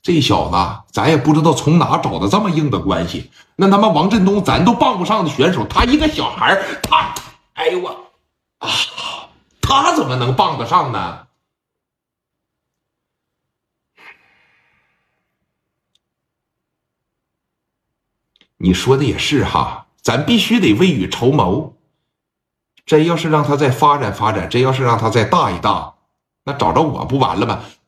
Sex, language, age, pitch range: male, Chinese, 60-79, 95-140 Hz